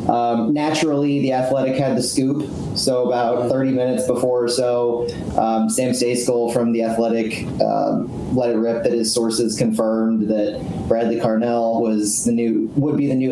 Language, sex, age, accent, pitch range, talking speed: English, male, 30-49, American, 115-125 Hz, 170 wpm